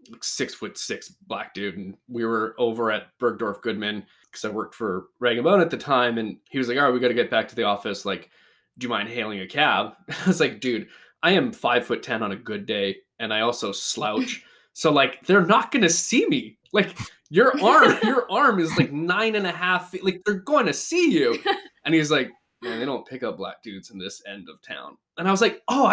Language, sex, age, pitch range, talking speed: English, male, 20-39, 115-175 Hz, 240 wpm